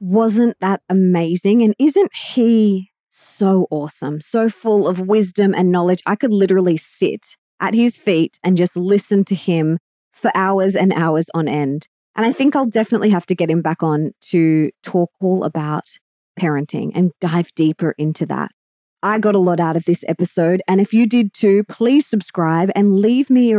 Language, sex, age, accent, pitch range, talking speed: English, female, 20-39, Australian, 175-225 Hz, 185 wpm